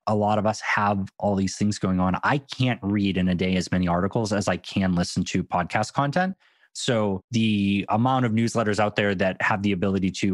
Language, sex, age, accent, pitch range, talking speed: English, male, 20-39, American, 95-115 Hz, 220 wpm